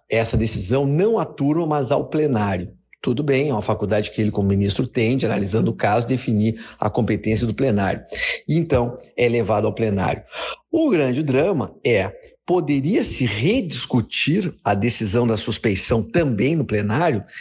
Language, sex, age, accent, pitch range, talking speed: Portuguese, male, 50-69, Brazilian, 110-155 Hz, 150 wpm